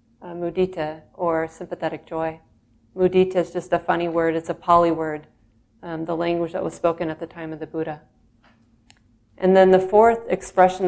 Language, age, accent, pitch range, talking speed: English, 30-49, American, 115-185 Hz, 175 wpm